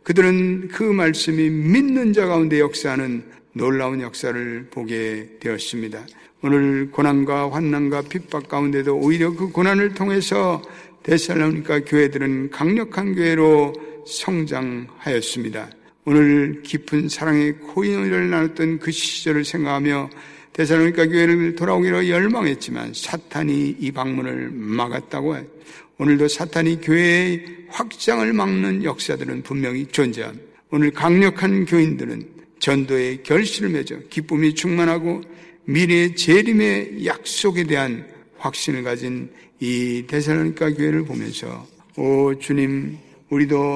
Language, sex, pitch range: Korean, male, 140-175 Hz